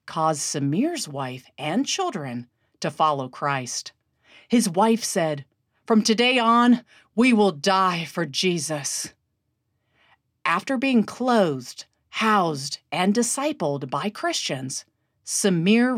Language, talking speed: English, 105 wpm